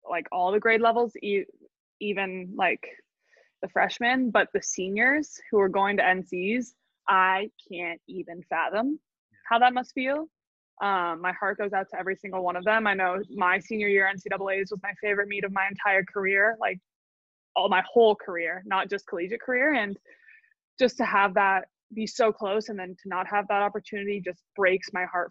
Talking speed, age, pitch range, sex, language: 185 wpm, 20-39, 190-230 Hz, female, English